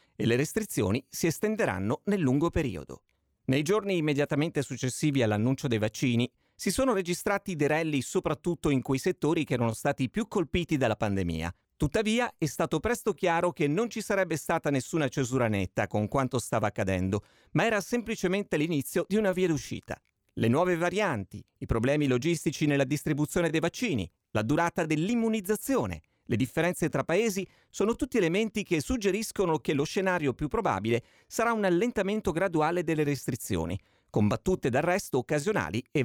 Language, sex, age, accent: Italian, male, 40-59, native